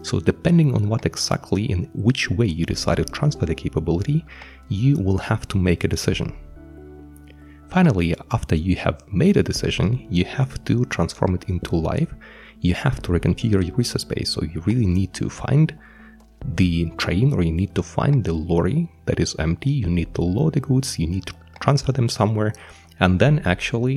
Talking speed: 190 wpm